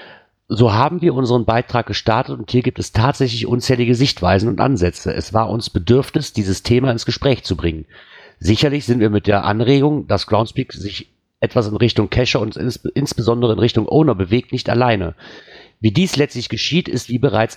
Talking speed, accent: 180 wpm, German